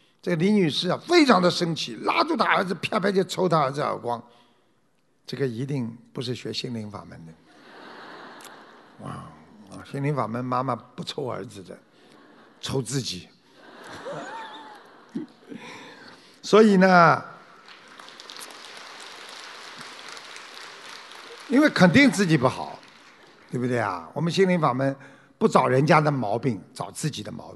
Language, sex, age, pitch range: Chinese, male, 50-69, 150-235 Hz